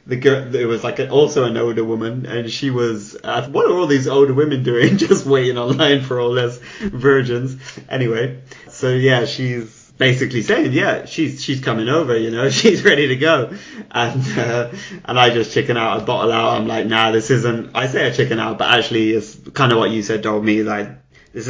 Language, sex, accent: English, male, British